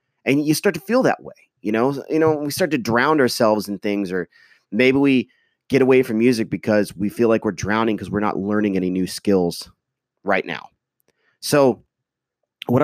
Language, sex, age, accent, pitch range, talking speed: English, male, 30-49, American, 110-140 Hz, 195 wpm